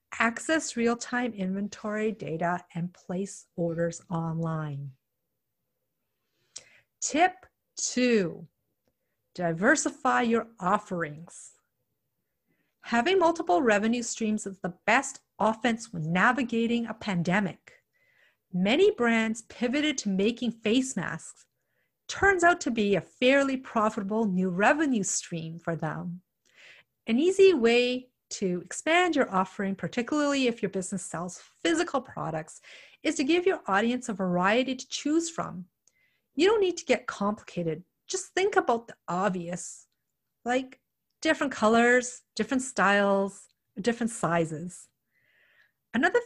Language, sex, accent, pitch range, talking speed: English, female, American, 190-275 Hz, 115 wpm